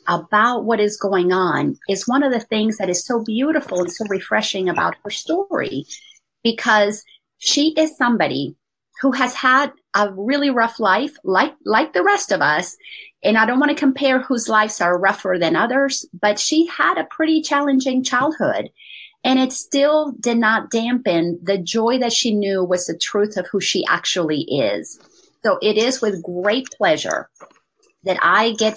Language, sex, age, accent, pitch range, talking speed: English, female, 40-59, American, 200-265 Hz, 175 wpm